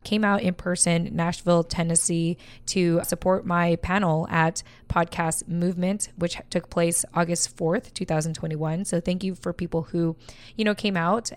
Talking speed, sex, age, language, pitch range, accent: 155 wpm, female, 20-39, English, 165-185 Hz, American